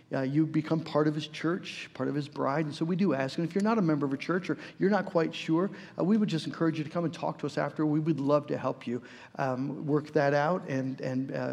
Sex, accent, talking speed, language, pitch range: male, American, 280 wpm, English, 135-165 Hz